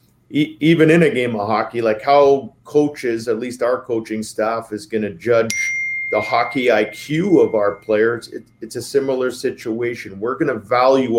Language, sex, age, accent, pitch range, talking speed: English, male, 50-69, American, 110-130 Hz, 170 wpm